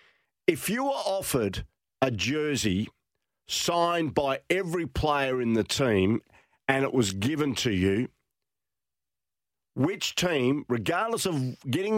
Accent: Australian